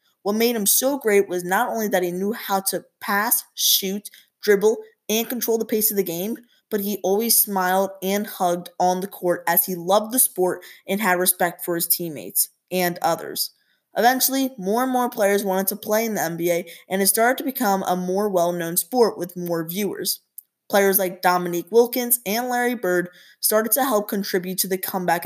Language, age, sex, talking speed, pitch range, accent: English, 20-39, female, 195 wpm, 180-225 Hz, American